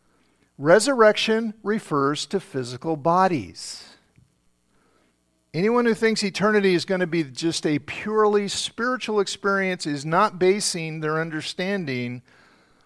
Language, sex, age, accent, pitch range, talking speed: English, male, 50-69, American, 140-195 Hz, 105 wpm